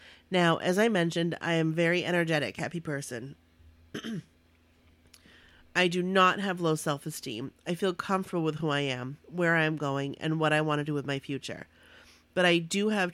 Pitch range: 135-170 Hz